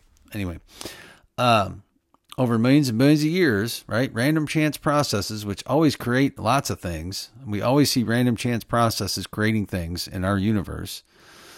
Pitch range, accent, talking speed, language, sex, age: 95-125 Hz, American, 155 wpm, English, male, 50-69